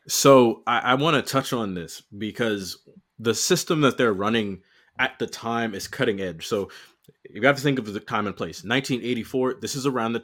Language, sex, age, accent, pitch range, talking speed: English, male, 30-49, American, 115-140 Hz, 205 wpm